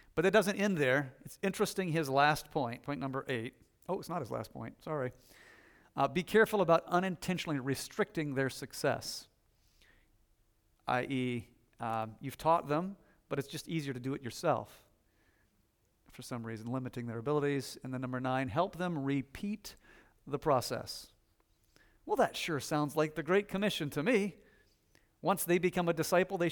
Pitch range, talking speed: 125-170 Hz, 160 wpm